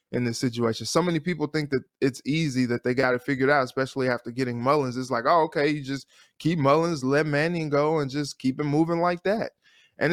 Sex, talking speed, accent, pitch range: male, 230 wpm, American, 125-145 Hz